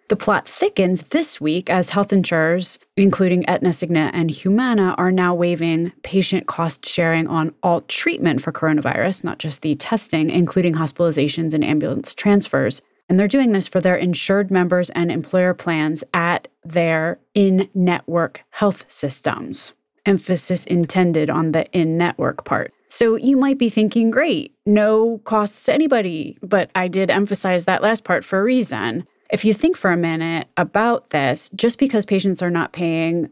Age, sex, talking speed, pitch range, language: 20-39, female, 160 wpm, 165-200 Hz, English